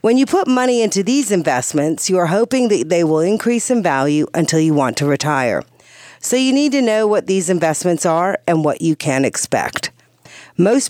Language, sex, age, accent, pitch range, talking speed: English, female, 50-69, American, 160-235 Hz, 200 wpm